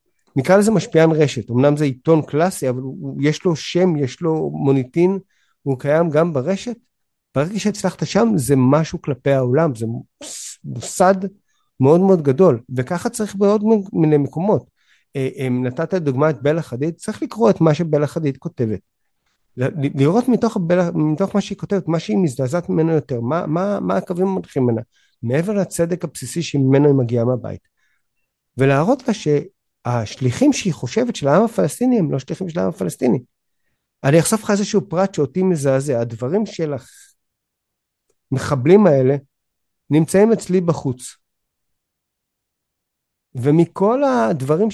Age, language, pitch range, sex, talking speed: 50-69, Hebrew, 135-195 Hz, male, 140 wpm